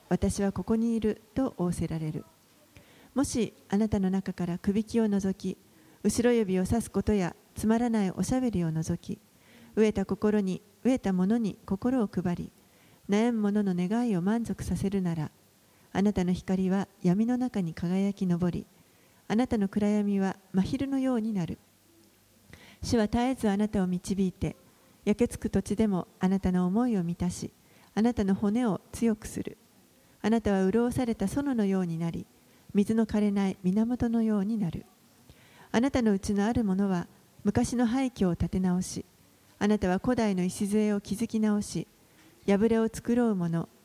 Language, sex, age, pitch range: Japanese, female, 40-59, 185-225 Hz